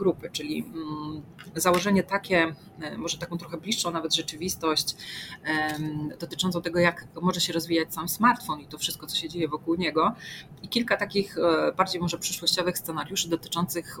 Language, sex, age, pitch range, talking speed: Polish, female, 30-49, 155-170 Hz, 145 wpm